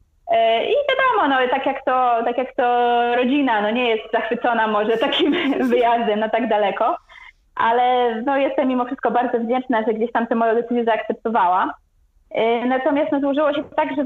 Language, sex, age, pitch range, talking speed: Polish, female, 20-39, 210-255 Hz, 170 wpm